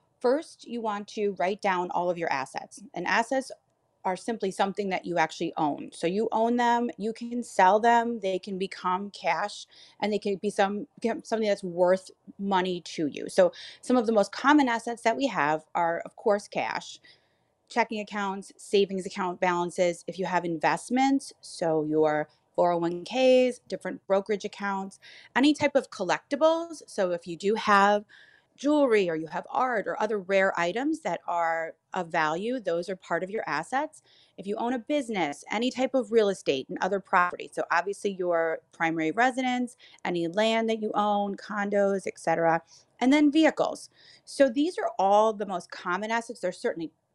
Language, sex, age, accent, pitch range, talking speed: English, female, 30-49, American, 180-240 Hz, 175 wpm